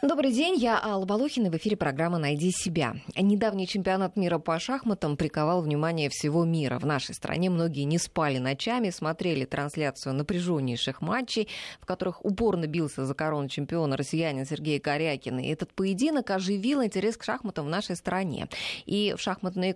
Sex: female